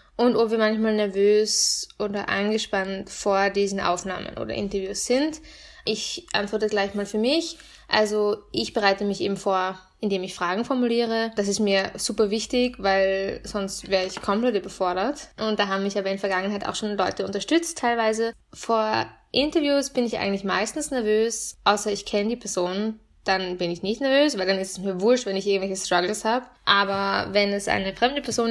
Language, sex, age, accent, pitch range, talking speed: German, female, 10-29, German, 200-240 Hz, 185 wpm